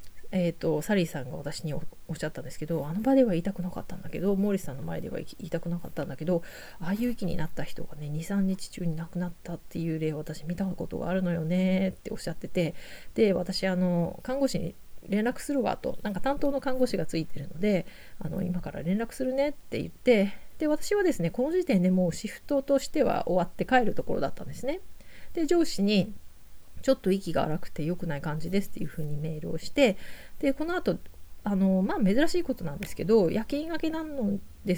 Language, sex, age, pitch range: Japanese, female, 30-49, 170-230 Hz